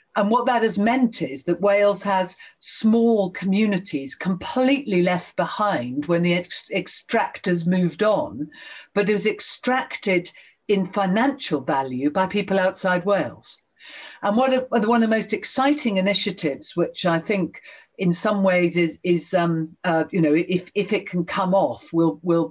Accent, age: British, 50-69